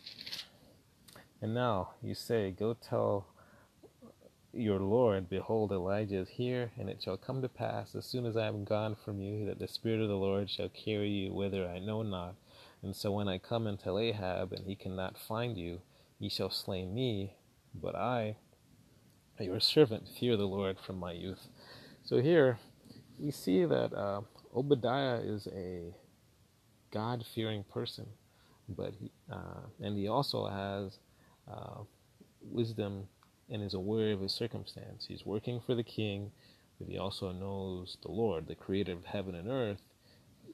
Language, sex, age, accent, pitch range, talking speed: English, male, 30-49, American, 95-115 Hz, 160 wpm